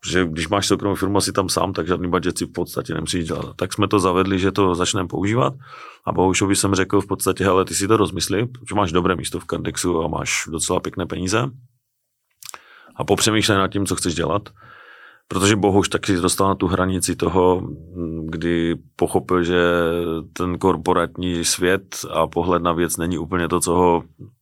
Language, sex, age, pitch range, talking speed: Czech, male, 30-49, 85-105 Hz, 185 wpm